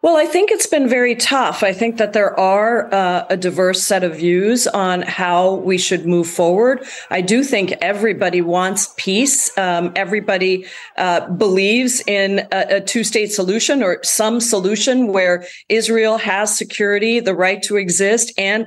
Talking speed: 165 wpm